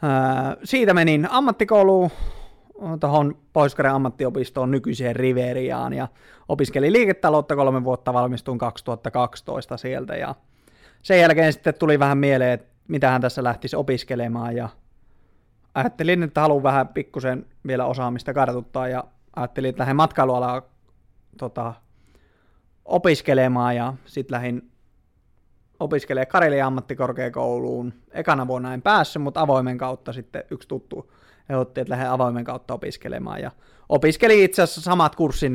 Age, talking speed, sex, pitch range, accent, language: 20-39, 120 wpm, male, 125-145 Hz, native, Finnish